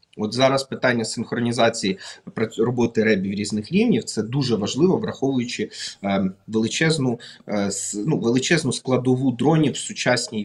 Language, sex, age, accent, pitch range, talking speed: Ukrainian, male, 30-49, native, 115-140 Hz, 110 wpm